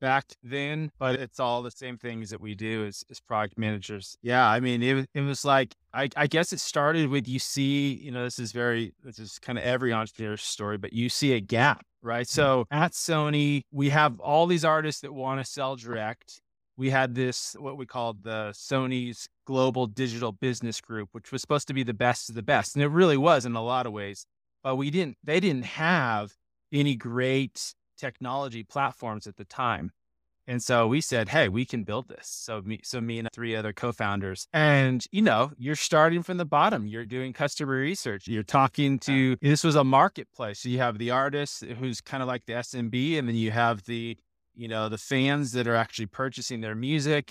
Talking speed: 210 wpm